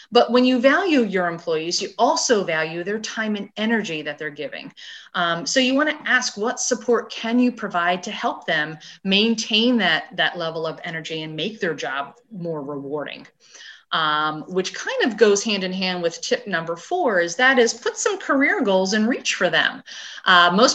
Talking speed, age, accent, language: 190 wpm, 30-49, American, English